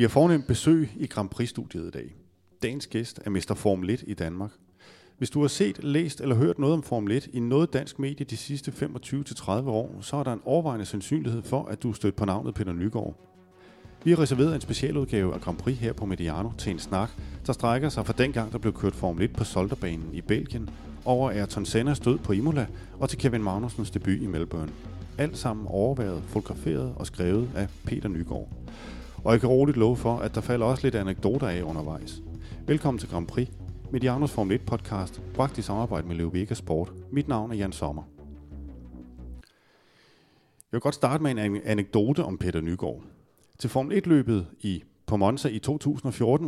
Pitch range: 95-135 Hz